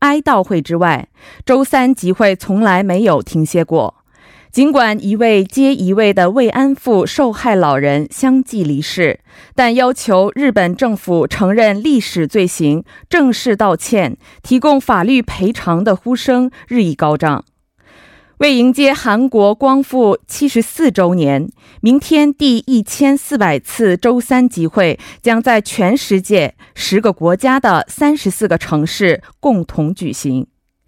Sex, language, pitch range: female, Korean, 185-260 Hz